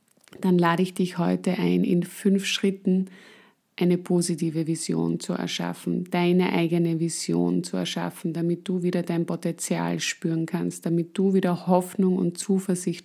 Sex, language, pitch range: female, German, 165-190 Hz